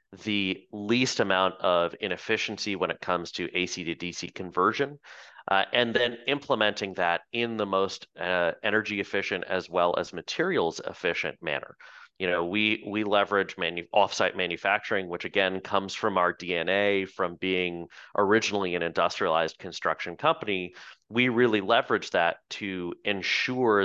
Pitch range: 90-105 Hz